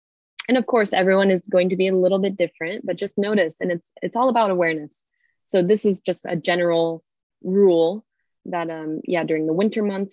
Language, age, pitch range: English, 20-39, 160-190 Hz